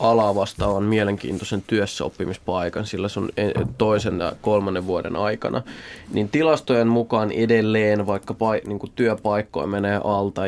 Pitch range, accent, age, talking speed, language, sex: 100-115 Hz, native, 20-39, 115 wpm, Finnish, male